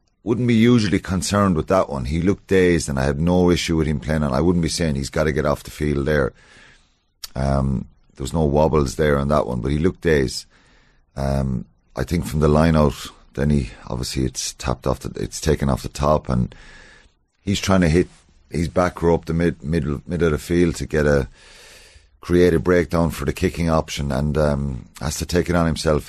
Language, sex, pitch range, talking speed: English, male, 70-85 Hz, 220 wpm